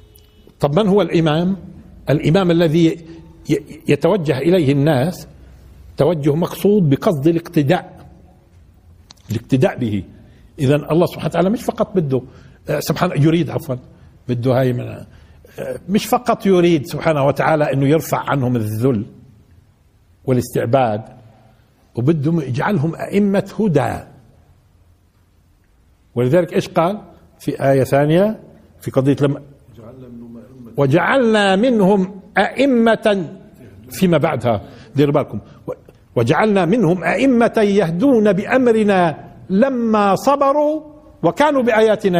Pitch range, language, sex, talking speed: 110-175 Hz, Arabic, male, 95 wpm